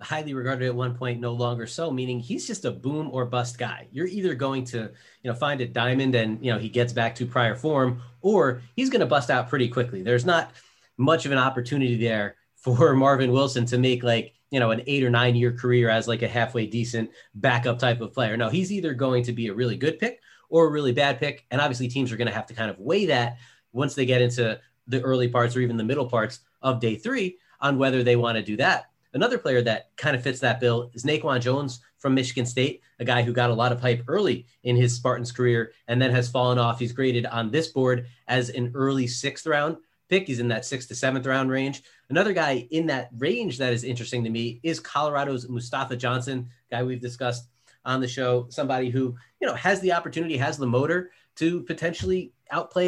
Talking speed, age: 235 wpm, 30-49